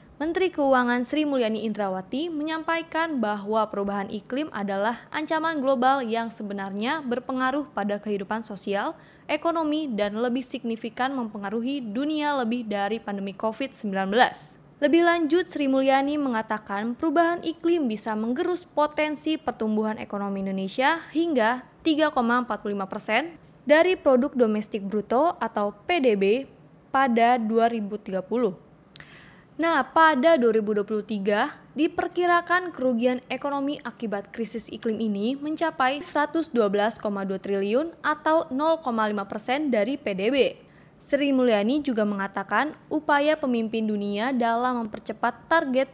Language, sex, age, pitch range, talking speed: Indonesian, female, 20-39, 215-295 Hz, 105 wpm